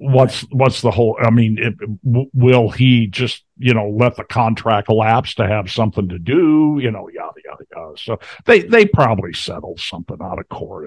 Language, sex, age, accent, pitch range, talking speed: English, male, 60-79, American, 105-130 Hz, 200 wpm